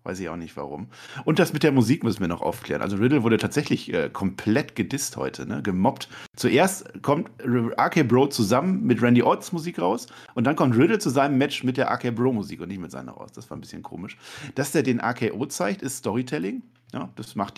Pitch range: 100-130 Hz